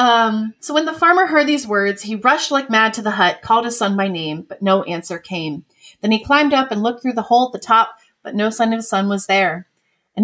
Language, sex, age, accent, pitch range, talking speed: English, female, 30-49, American, 190-235 Hz, 265 wpm